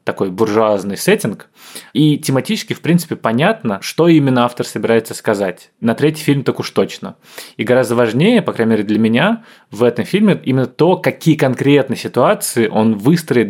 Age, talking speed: 20-39, 165 wpm